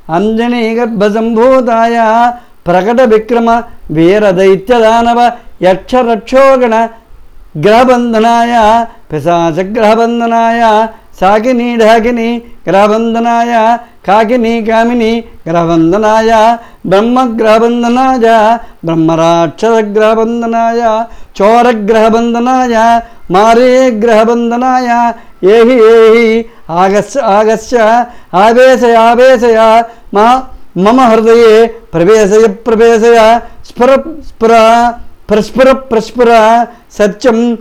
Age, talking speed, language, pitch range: 60-79, 45 wpm, Telugu, 220-235 Hz